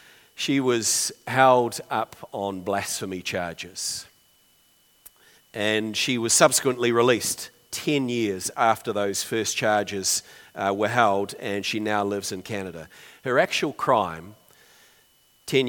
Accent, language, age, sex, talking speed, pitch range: Australian, English, 40-59, male, 120 wpm, 100-145 Hz